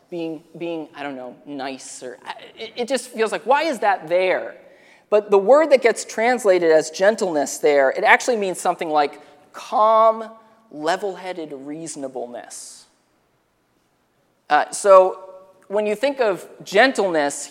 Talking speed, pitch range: 135 wpm, 165-225 Hz